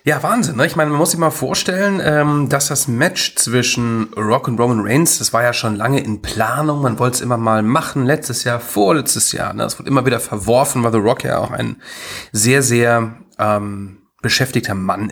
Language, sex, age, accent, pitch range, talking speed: German, male, 40-59, German, 115-145 Hz, 200 wpm